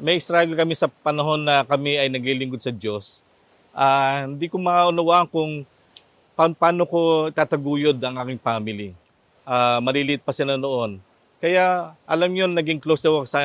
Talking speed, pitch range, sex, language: 160 wpm, 125-160 Hz, male, Filipino